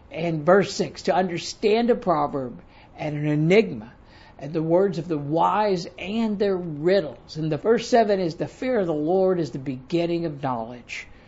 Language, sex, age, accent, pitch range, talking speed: English, male, 60-79, American, 145-185 Hz, 180 wpm